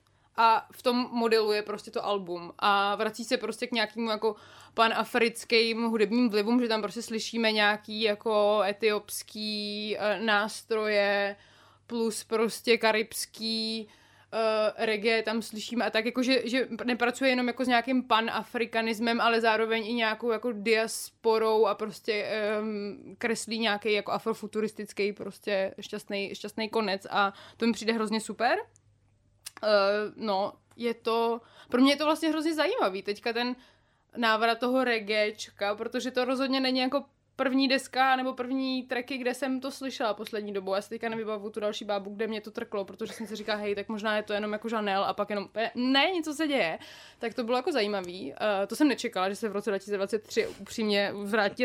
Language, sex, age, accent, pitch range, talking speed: Czech, female, 20-39, native, 205-235 Hz, 165 wpm